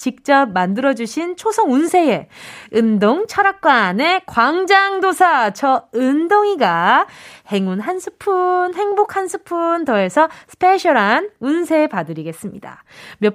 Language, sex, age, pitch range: Korean, female, 20-39, 225-350 Hz